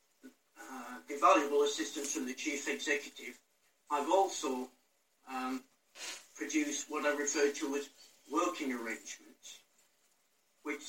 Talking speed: 110 wpm